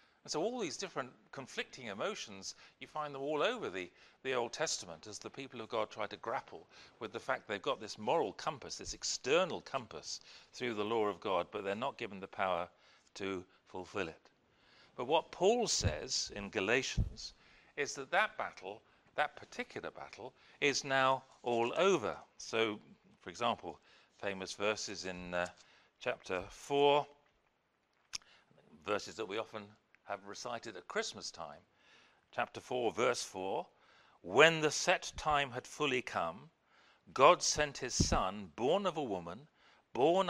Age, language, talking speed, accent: 50-69, English, 155 wpm, British